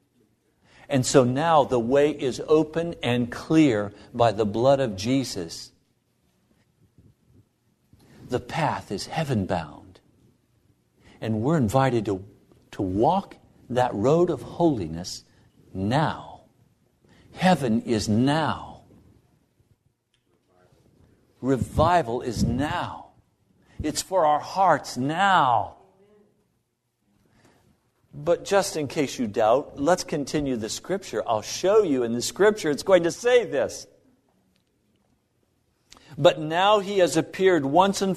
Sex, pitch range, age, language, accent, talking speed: male, 130-195 Hz, 60-79, English, American, 110 wpm